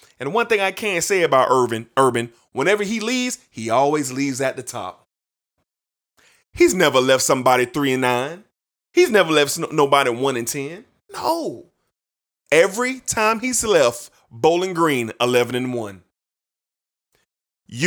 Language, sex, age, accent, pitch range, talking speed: English, male, 30-49, American, 125-180 Hz, 130 wpm